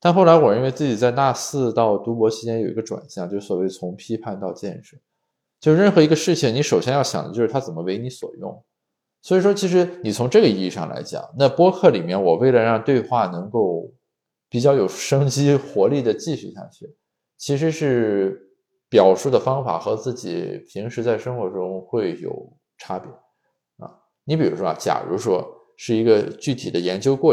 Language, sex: Chinese, male